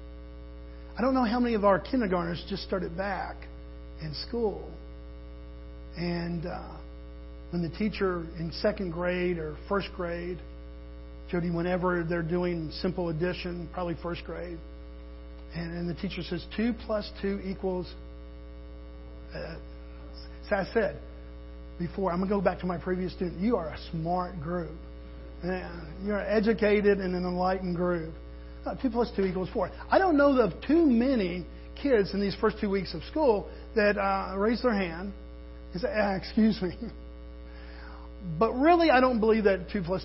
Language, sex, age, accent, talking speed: English, male, 40-59, American, 160 wpm